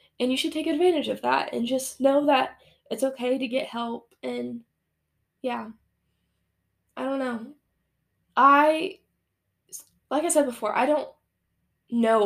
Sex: female